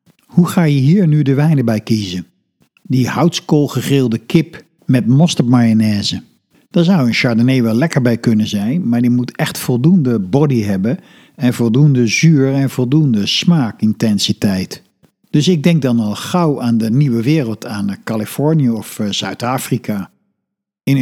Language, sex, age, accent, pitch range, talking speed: Dutch, male, 50-69, Dutch, 110-140 Hz, 150 wpm